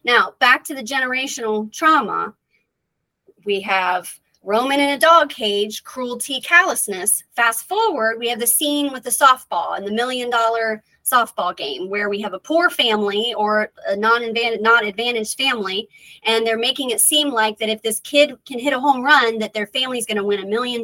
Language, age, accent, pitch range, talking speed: English, 30-49, American, 210-265 Hz, 185 wpm